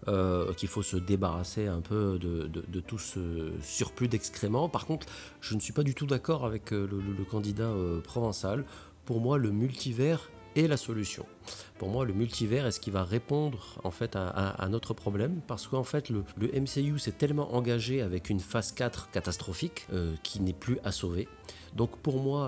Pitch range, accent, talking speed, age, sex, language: 100-130 Hz, French, 200 wpm, 40-59, male, French